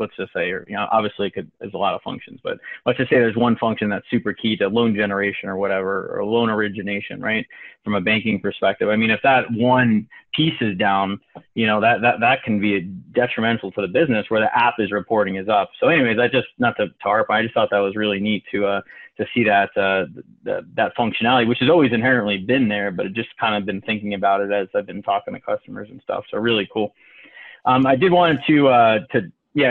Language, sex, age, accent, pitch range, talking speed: English, male, 30-49, American, 105-120 Hz, 240 wpm